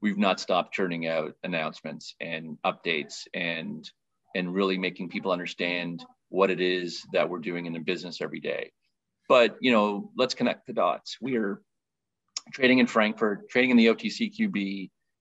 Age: 30-49